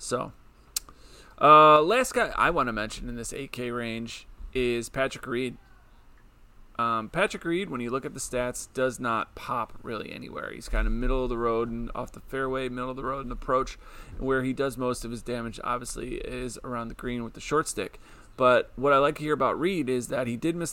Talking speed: 215 wpm